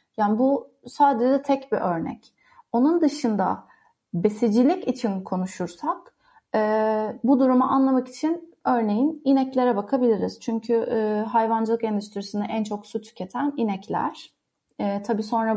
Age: 30-49